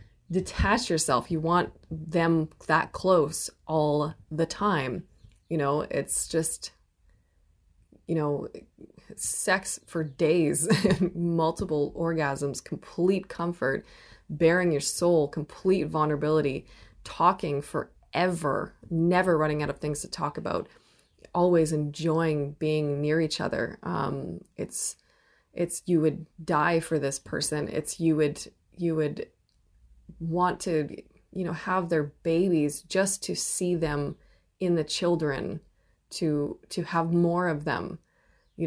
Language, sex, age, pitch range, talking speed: English, female, 20-39, 145-175 Hz, 125 wpm